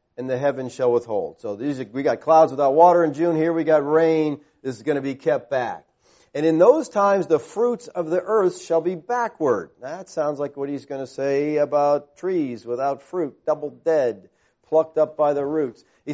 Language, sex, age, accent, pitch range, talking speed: English, male, 40-59, American, 135-180 Hz, 215 wpm